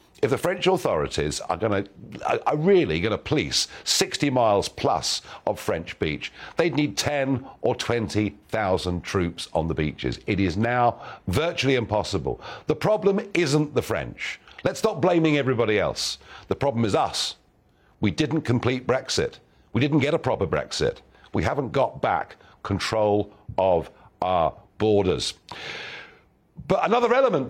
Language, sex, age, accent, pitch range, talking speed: English, male, 50-69, British, 95-150 Hz, 145 wpm